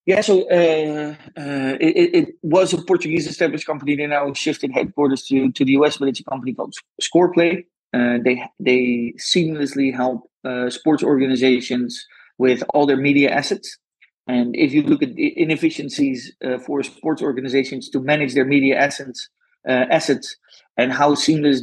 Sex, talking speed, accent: male, 160 wpm, Dutch